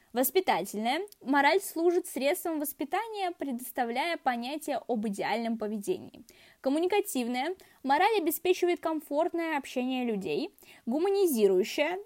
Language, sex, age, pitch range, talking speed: Russian, female, 10-29, 230-350 Hz, 85 wpm